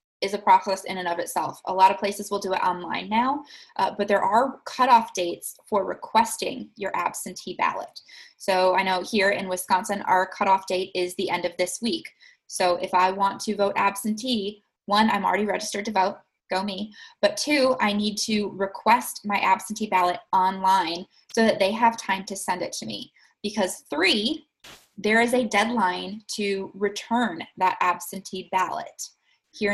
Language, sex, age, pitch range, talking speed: English, female, 20-39, 185-230 Hz, 180 wpm